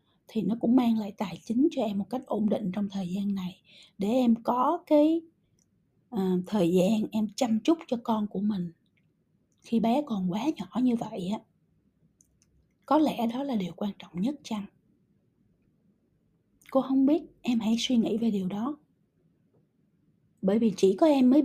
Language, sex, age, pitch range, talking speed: Vietnamese, female, 20-39, 185-250 Hz, 175 wpm